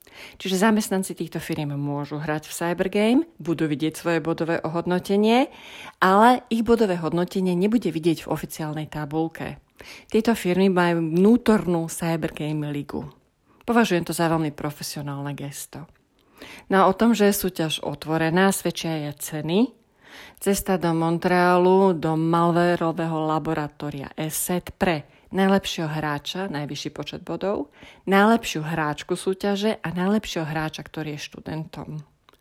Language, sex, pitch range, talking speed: Slovak, female, 155-190 Hz, 120 wpm